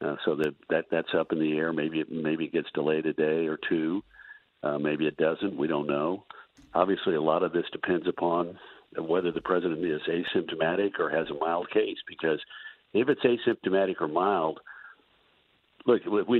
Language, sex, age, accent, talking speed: English, male, 60-79, American, 185 wpm